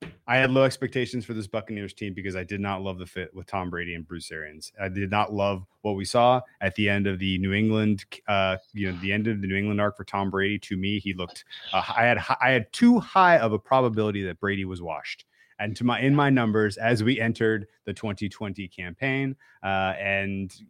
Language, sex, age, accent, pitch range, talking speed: English, male, 30-49, American, 90-110 Hz, 230 wpm